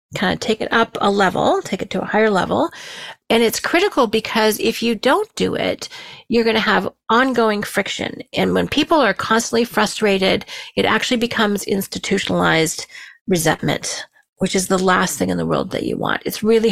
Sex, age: female, 40-59